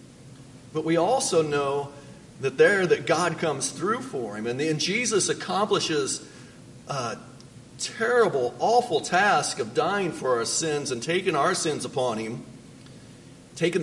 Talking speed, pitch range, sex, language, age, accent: 140 wpm, 145-185 Hz, male, English, 40-59, American